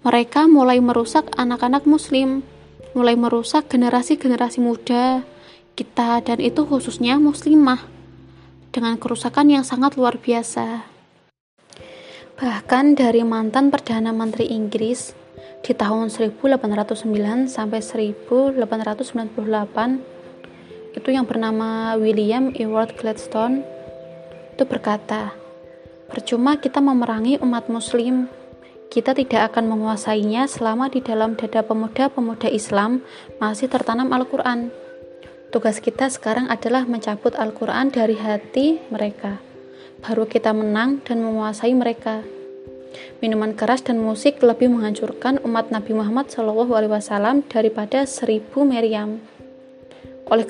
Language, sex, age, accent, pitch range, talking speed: Indonesian, female, 20-39, native, 220-255 Hz, 100 wpm